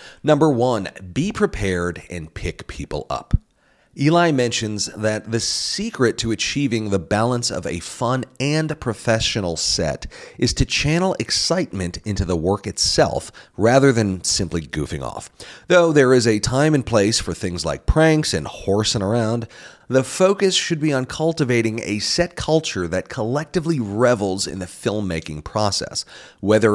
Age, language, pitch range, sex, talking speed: 40-59, English, 95-135 Hz, male, 150 wpm